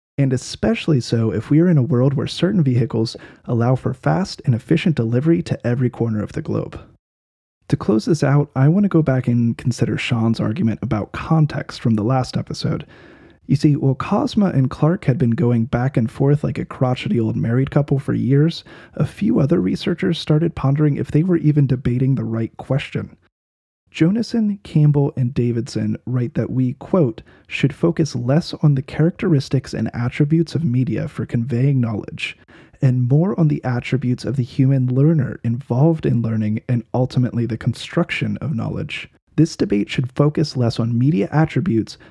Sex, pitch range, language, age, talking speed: male, 115-150 Hz, English, 30-49, 175 wpm